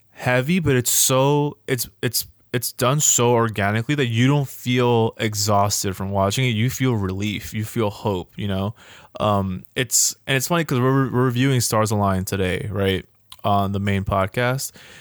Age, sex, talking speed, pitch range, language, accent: 20-39, male, 170 wpm, 100-120 Hz, English, American